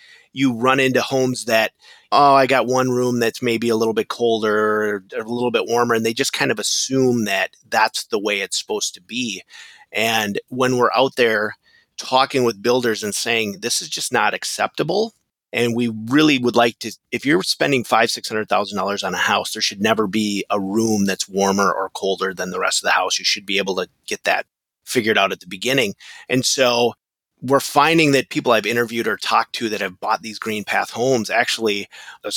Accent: American